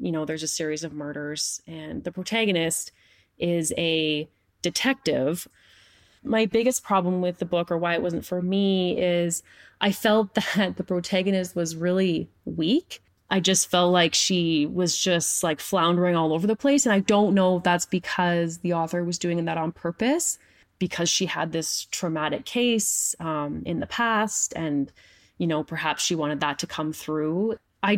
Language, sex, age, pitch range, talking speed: English, female, 20-39, 170-210 Hz, 175 wpm